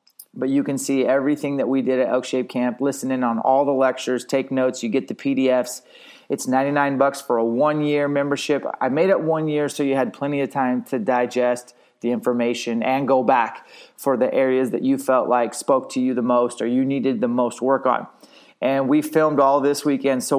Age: 30-49